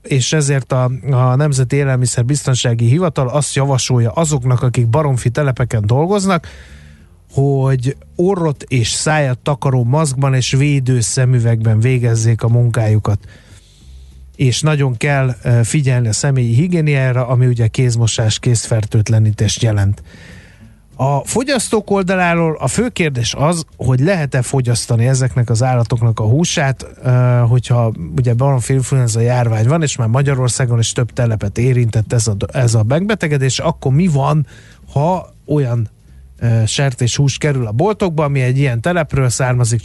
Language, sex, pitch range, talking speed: Hungarian, male, 115-145 Hz, 130 wpm